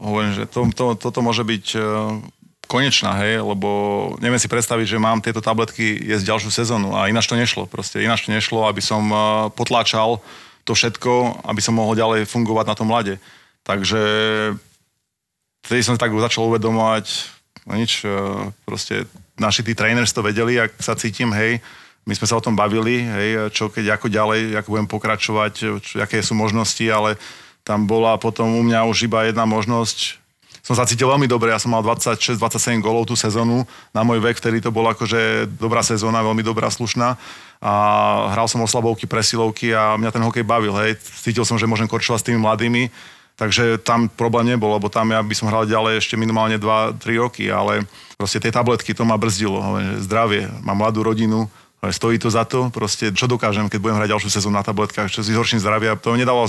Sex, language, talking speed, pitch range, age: male, Slovak, 190 wpm, 105-115 Hz, 30-49